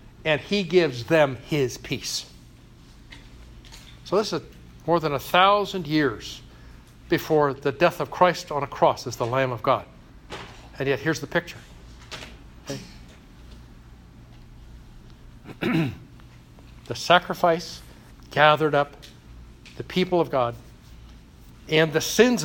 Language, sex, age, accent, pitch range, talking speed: English, male, 60-79, American, 130-170 Hz, 115 wpm